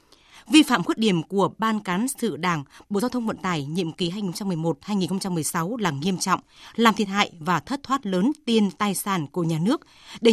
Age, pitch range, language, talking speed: 20-39, 180-235 Hz, Vietnamese, 200 wpm